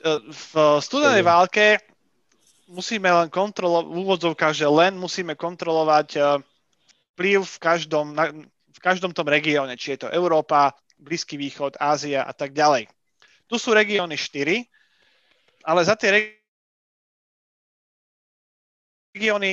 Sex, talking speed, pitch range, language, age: male, 115 wpm, 155-195 Hz, Slovak, 30-49